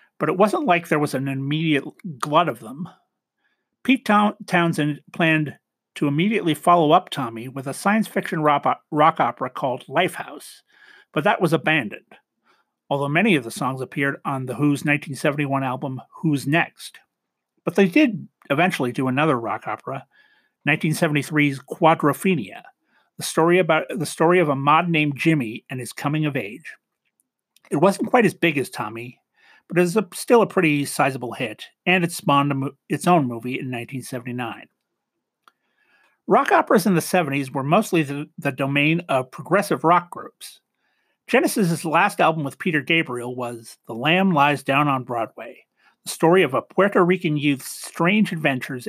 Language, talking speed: English, 160 wpm